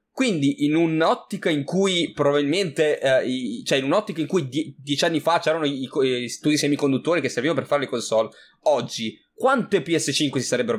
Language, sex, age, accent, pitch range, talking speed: Italian, male, 20-39, native, 135-220 Hz, 190 wpm